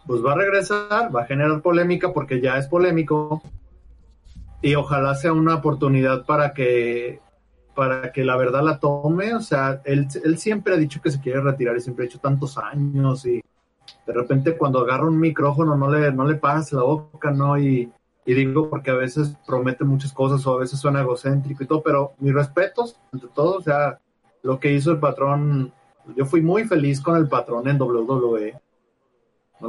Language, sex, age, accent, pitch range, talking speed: Spanish, male, 30-49, Mexican, 130-150 Hz, 190 wpm